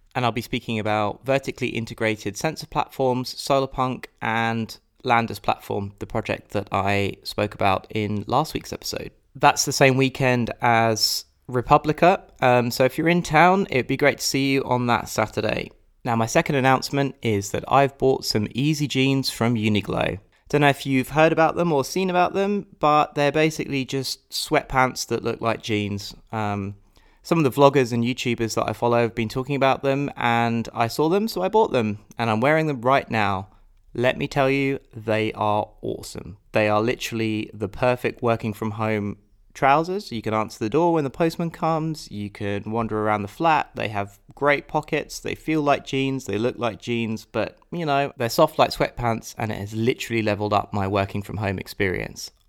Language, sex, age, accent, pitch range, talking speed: English, male, 20-39, British, 110-140 Hz, 190 wpm